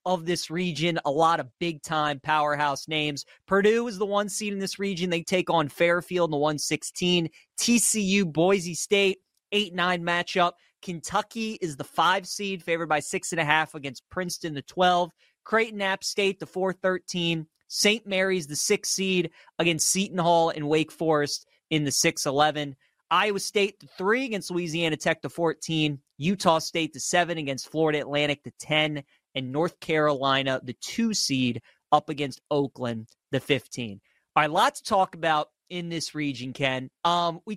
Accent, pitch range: American, 150-185 Hz